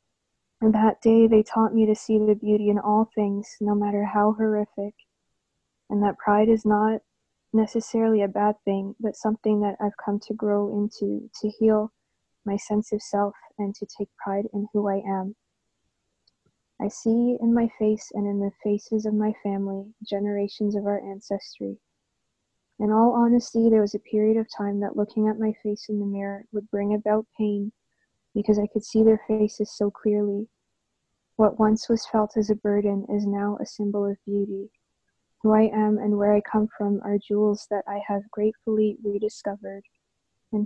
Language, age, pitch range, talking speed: English, 20-39, 205-220 Hz, 180 wpm